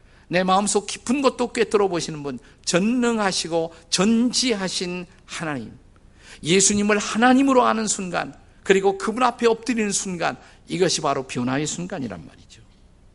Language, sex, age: Korean, male, 50-69